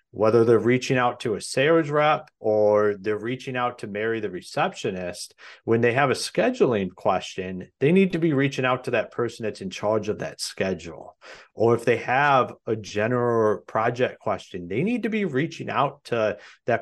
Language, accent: English, American